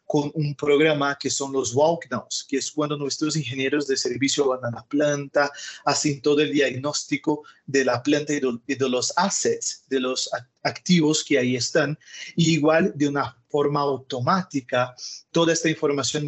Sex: male